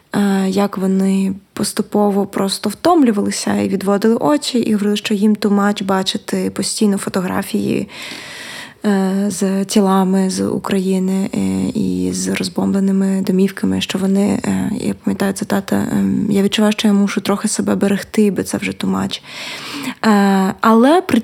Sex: female